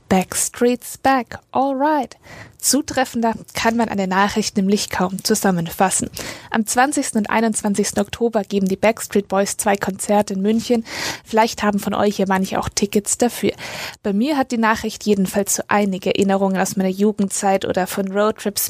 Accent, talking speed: German, 160 wpm